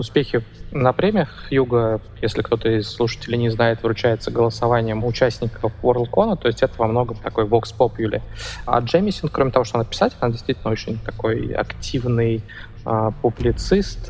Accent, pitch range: native, 110-130 Hz